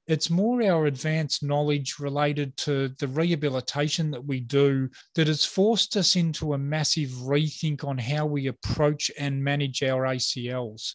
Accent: Australian